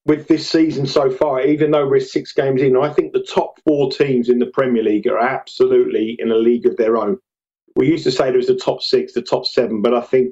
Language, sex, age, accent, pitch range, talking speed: English, male, 40-59, British, 125-195 Hz, 255 wpm